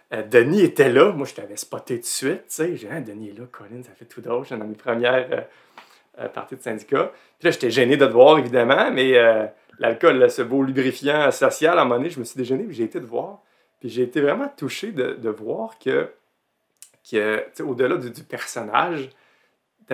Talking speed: 225 wpm